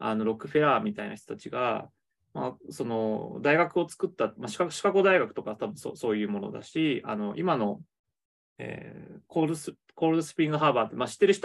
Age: 20-39